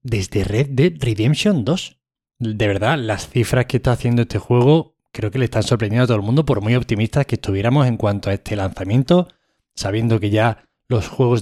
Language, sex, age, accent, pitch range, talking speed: Spanish, male, 20-39, Spanish, 110-150 Hz, 200 wpm